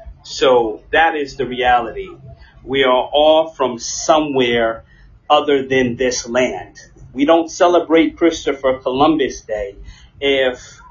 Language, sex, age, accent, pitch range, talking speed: English, male, 30-49, American, 120-165 Hz, 115 wpm